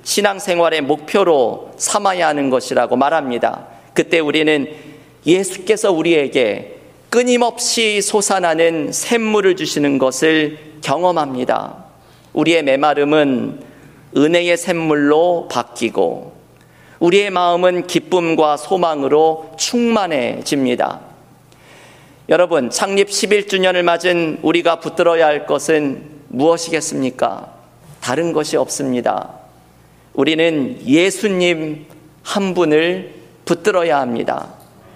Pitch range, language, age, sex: 145-185 Hz, Korean, 40-59, male